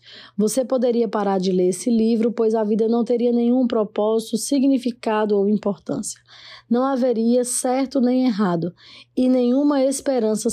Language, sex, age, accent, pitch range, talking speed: Portuguese, female, 20-39, Brazilian, 200-245 Hz, 140 wpm